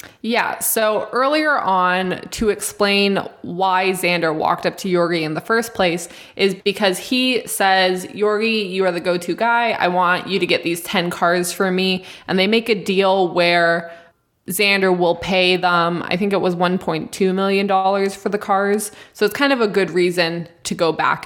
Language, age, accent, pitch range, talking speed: English, 20-39, American, 175-205 Hz, 185 wpm